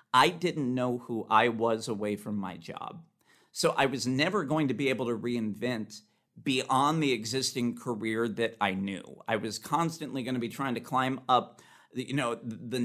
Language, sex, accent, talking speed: English, male, American, 175 wpm